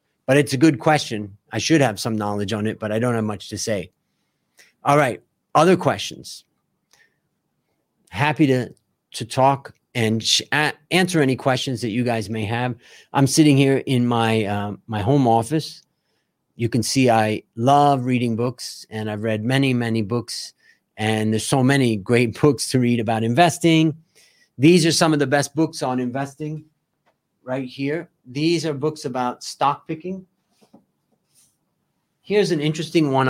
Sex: male